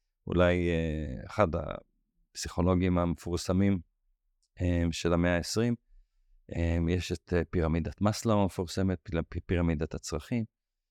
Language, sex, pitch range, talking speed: Hebrew, male, 85-100 Hz, 75 wpm